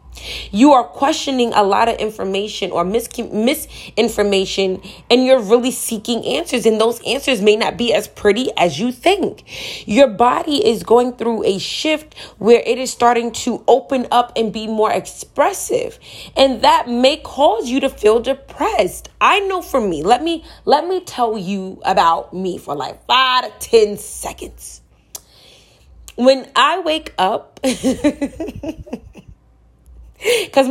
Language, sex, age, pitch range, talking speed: English, female, 20-39, 170-265 Hz, 145 wpm